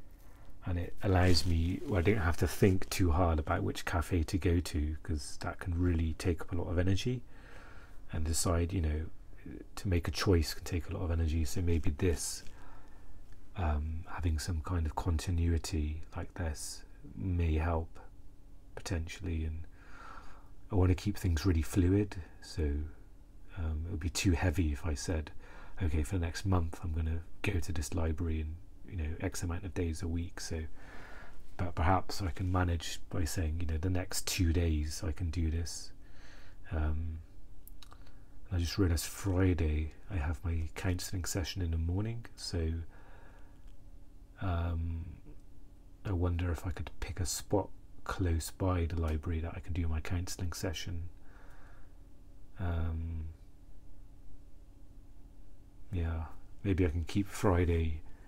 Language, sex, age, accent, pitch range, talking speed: English, male, 40-59, British, 80-95 Hz, 160 wpm